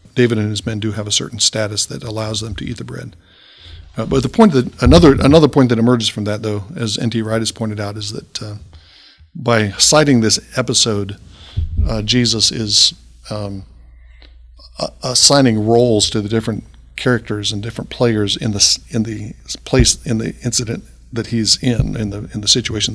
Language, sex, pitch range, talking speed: English, male, 100-120 Hz, 185 wpm